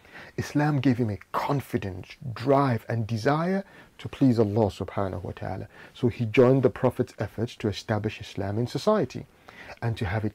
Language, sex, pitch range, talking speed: English, male, 110-150 Hz, 170 wpm